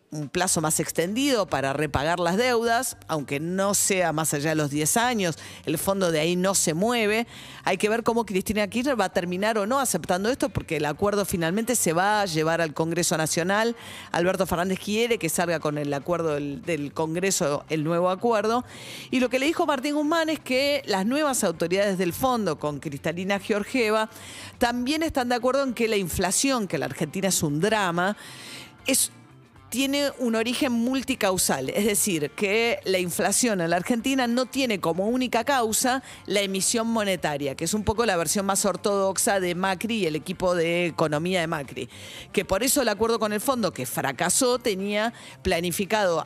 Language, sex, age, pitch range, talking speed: Spanish, female, 40-59, 170-235 Hz, 185 wpm